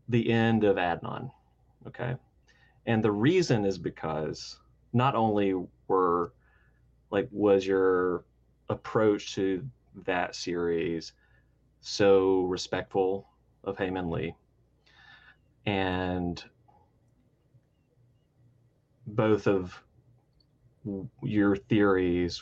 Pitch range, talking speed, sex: 95-125 Hz, 80 wpm, male